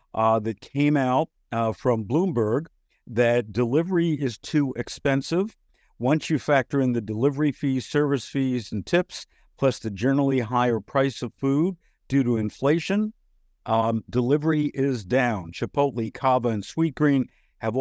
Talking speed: 140 wpm